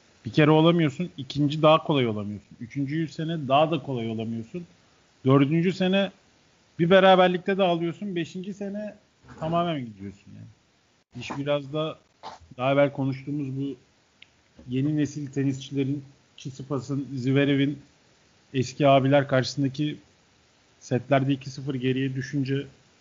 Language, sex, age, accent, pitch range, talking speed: Turkish, male, 40-59, native, 130-150 Hz, 115 wpm